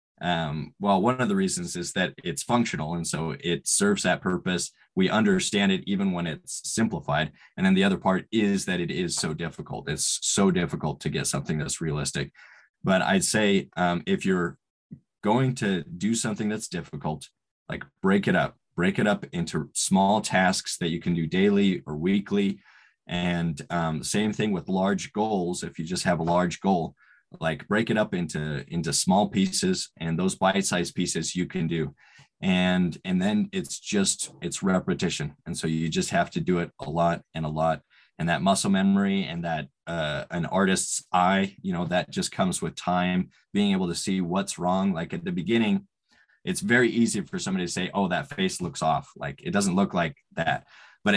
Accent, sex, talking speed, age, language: American, male, 195 wpm, 20-39, English